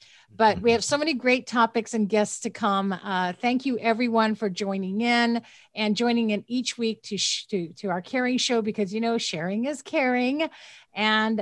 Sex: female